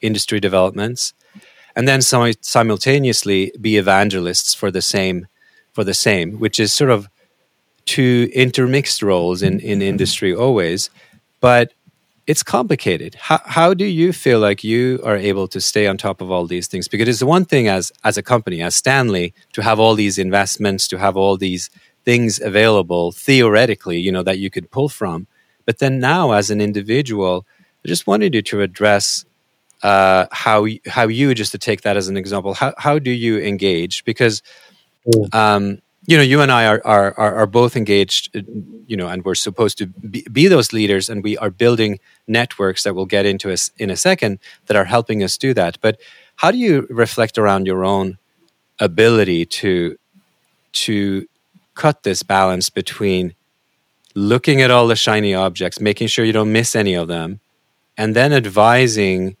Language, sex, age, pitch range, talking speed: English, male, 30-49, 95-120 Hz, 175 wpm